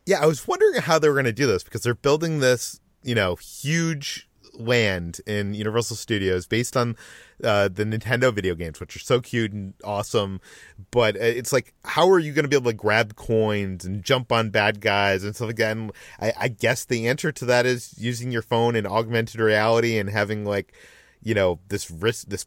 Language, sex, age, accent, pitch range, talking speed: English, male, 30-49, American, 105-135 Hz, 205 wpm